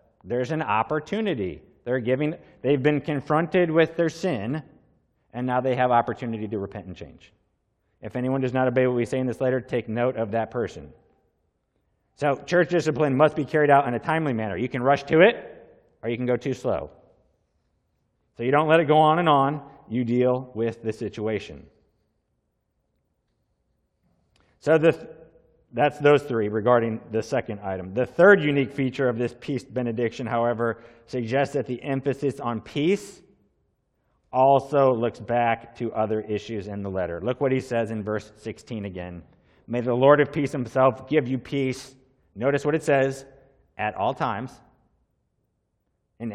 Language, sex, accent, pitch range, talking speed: English, male, American, 110-140 Hz, 175 wpm